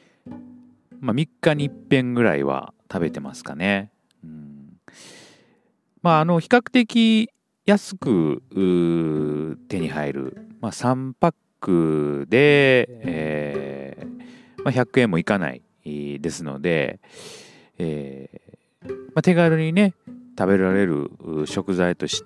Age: 40-59